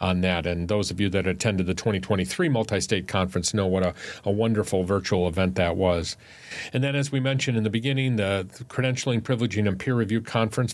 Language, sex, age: English, male, 40-59